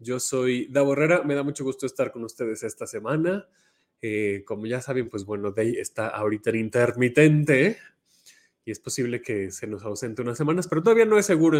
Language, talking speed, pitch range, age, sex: Spanish, 195 wpm, 120-150 Hz, 20-39, male